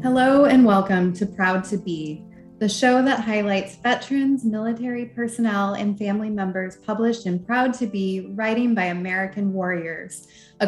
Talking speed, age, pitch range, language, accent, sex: 150 wpm, 20-39, 190-225 Hz, English, American, female